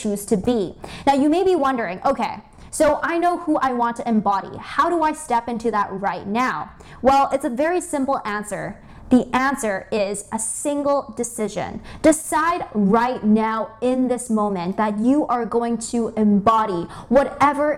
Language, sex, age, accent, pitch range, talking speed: English, female, 20-39, American, 220-285 Hz, 170 wpm